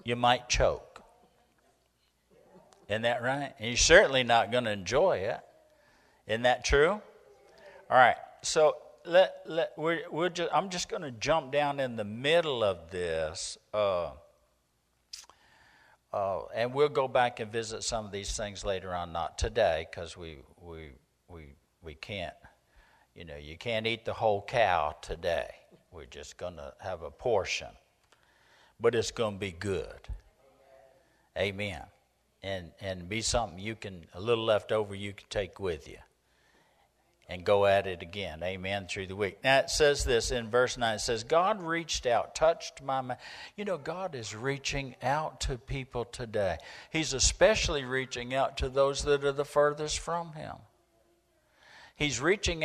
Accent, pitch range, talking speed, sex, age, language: American, 100-140 Hz, 165 wpm, male, 50-69, English